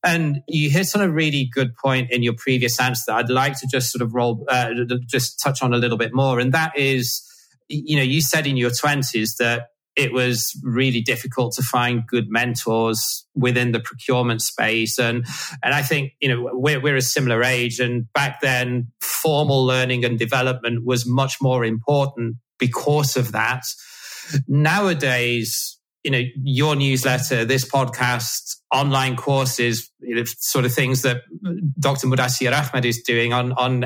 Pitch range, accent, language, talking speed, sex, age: 120-135 Hz, British, English, 170 wpm, male, 30-49